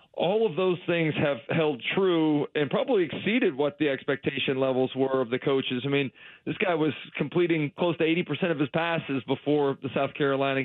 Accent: American